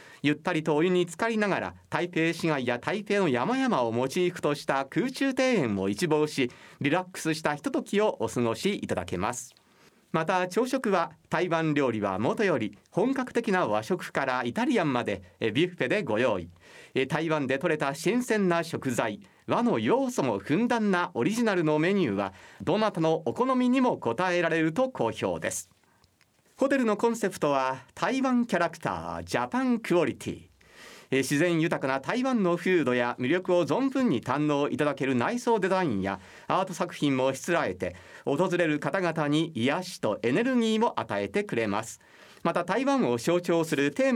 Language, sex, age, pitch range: Japanese, male, 40-59, 135-205 Hz